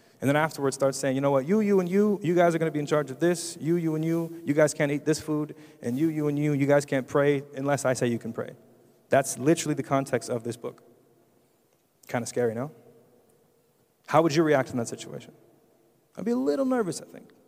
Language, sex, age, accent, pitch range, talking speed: English, male, 30-49, American, 120-150 Hz, 245 wpm